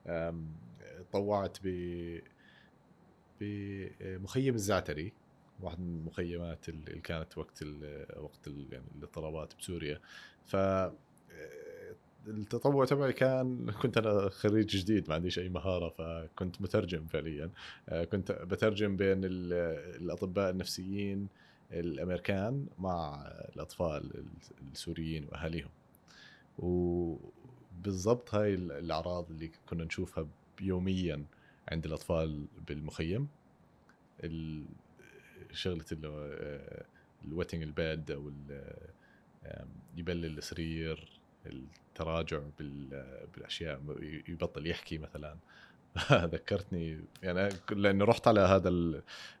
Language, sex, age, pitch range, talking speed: Arabic, male, 30-49, 80-100 Hz, 80 wpm